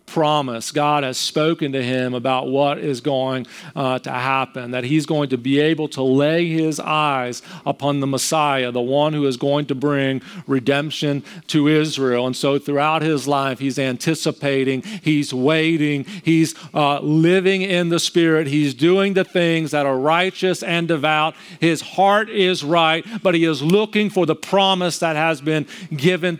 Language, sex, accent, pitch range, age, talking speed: English, male, American, 155-210 Hz, 40-59, 170 wpm